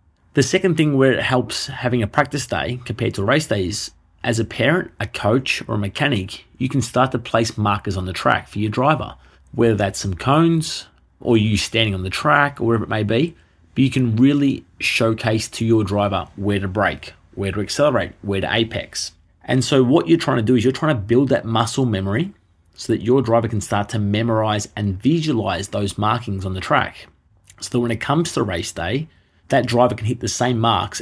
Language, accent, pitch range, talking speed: English, Australian, 100-125 Hz, 215 wpm